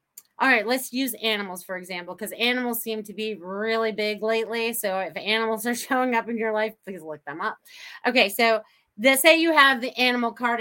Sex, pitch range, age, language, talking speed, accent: female, 210-260 Hz, 30-49, English, 210 wpm, American